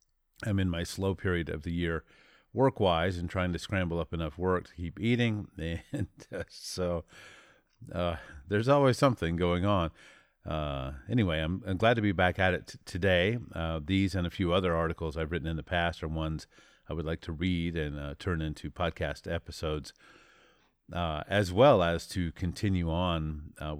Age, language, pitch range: 40-59, English, 80-100 Hz